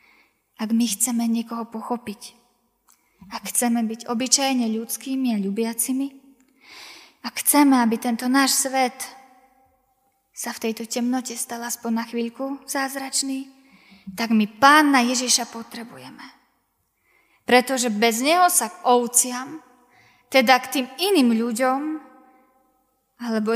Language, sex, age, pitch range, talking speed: Slovak, female, 20-39, 230-270 Hz, 110 wpm